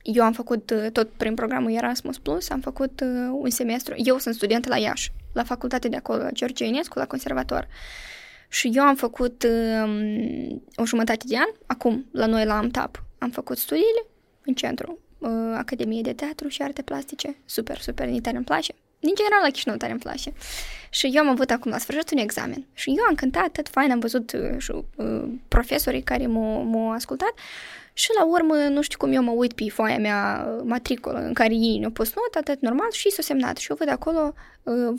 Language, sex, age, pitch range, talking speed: Romanian, female, 20-39, 235-305 Hz, 200 wpm